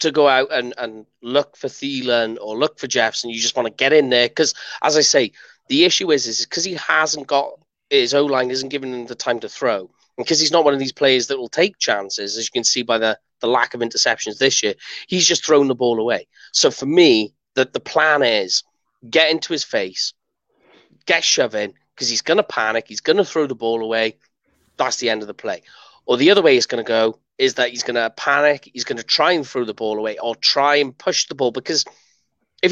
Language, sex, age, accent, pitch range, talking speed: English, male, 30-49, British, 125-155 Hz, 240 wpm